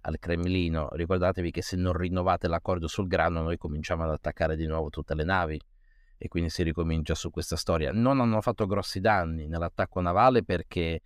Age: 30-49